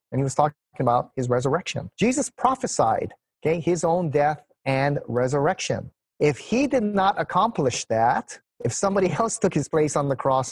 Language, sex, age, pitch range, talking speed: English, male, 30-49, 130-185 Hz, 165 wpm